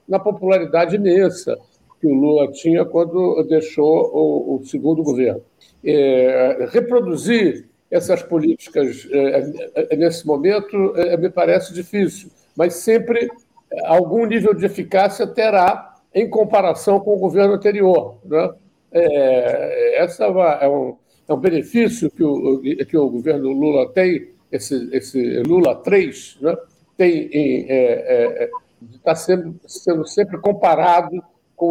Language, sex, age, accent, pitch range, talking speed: Portuguese, male, 60-79, Brazilian, 150-205 Hz, 130 wpm